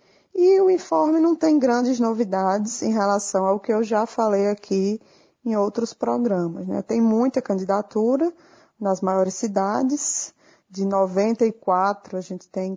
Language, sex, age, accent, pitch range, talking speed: Portuguese, female, 20-39, Brazilian, 190-230 Hz, 140 wpm